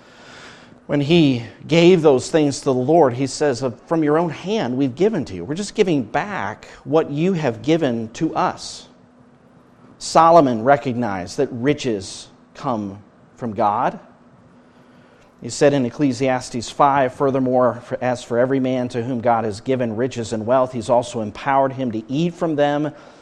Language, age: English, 40-59